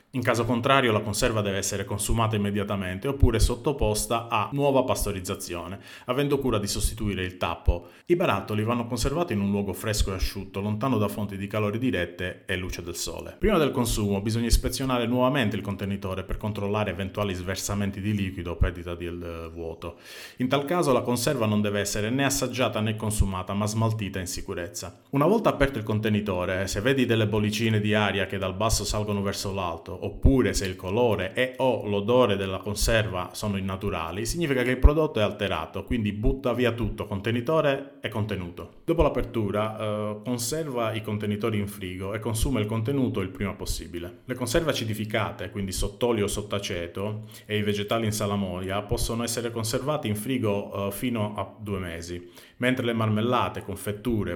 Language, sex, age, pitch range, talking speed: Italian, male, 30-49, 100-120 Hz, 170 wpm